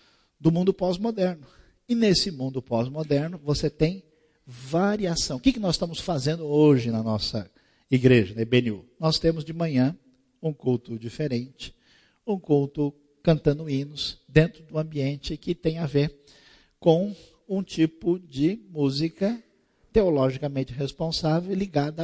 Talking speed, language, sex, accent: 130 wpm, Portuguese, male, Brazilian